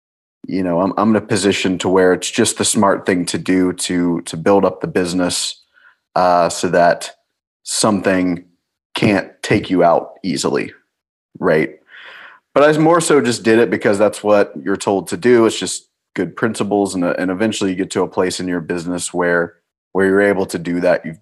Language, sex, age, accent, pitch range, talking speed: English, male, 30-49, American, 90-105 Hz, 195 wpm